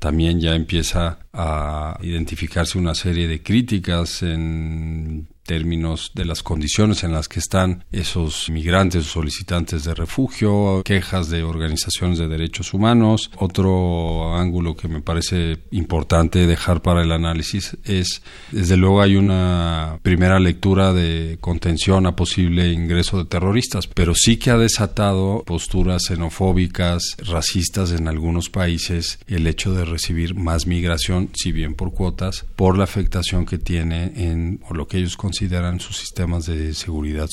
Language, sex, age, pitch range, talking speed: Spanish, male, 40-59, 80-95 Hz, 145 wpm